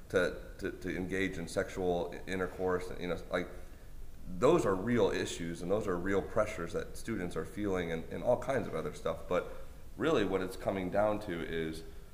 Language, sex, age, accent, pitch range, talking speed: English, male, 30-49, American, 85-100 Hz, 185 wpm